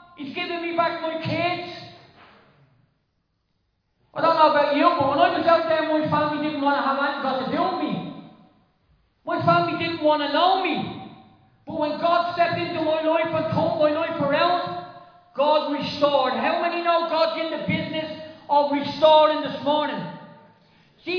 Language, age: English, 40-59